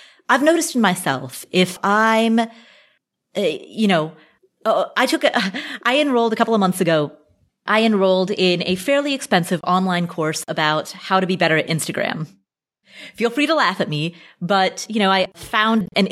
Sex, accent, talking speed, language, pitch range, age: female, American, 175 wpm, English, 160-220 Hz, 30-49